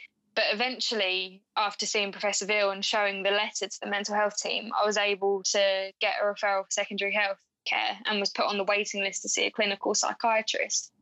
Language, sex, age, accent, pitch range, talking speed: English, female, 10-29, British, 195-215 Hz, 205 wpm